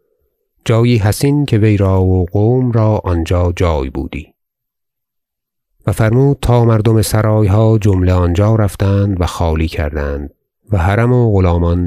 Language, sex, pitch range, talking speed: Persian, male, 85-110 Hz, 135 wpm